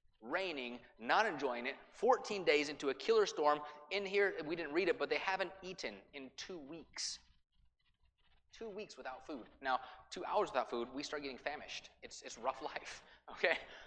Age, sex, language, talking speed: 30-49, male, English, 175 wpm